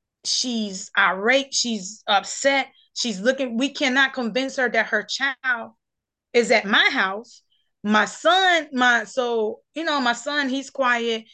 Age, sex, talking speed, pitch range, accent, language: 20-39, female, 145 wpm, 220-270 Hz, American, English